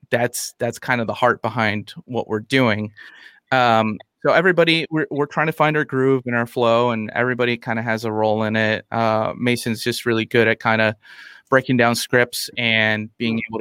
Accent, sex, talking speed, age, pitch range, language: American, male, 205 wpm, 30-49, 115-125 Hz, English